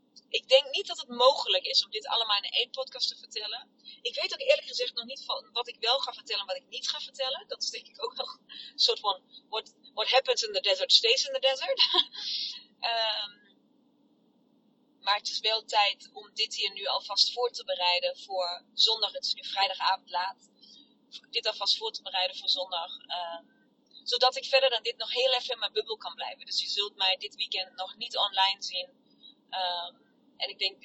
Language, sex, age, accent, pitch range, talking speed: Dutch, female, 30-49, Dutch, 210-275 Hz, 205 wpm